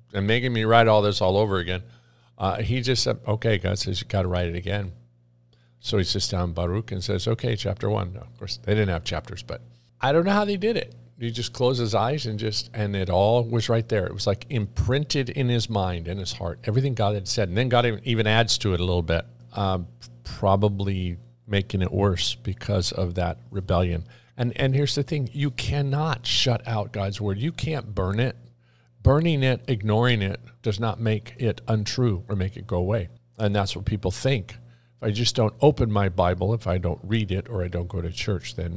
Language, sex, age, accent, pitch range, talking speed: English, male, 50-69, American, 95-120 Hz, 230 wpm